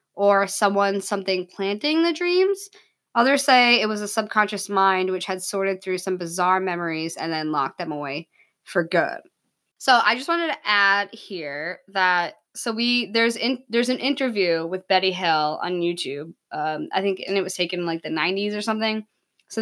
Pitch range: 180-220 Hz